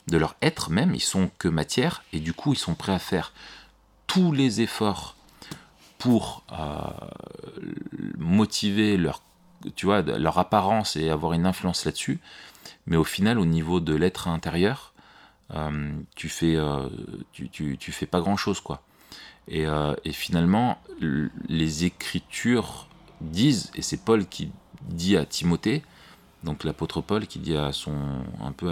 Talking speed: 155 wpm